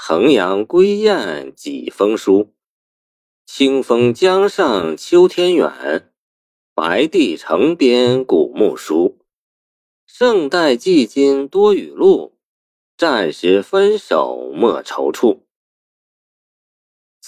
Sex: male